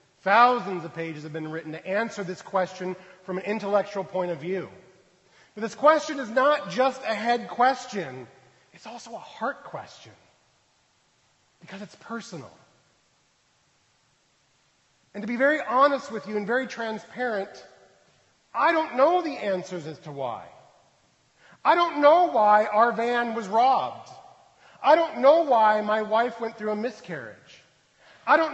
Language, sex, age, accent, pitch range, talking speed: English, male, 40-59, American, 160-225 Hz, 150 wpm